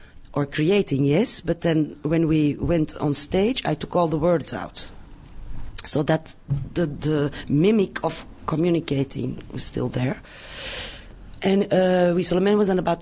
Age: 40-59